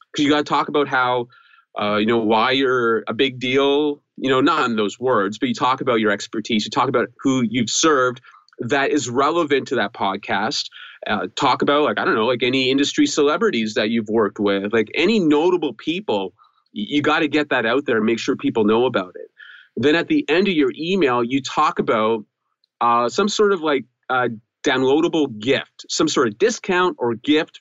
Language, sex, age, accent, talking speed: English, male, 30-49, American, 210 wpm